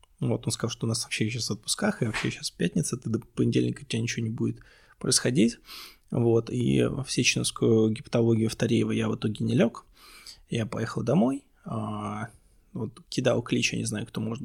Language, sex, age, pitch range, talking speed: Russian, male, 20-39, 110-140 Hz, 190 wpm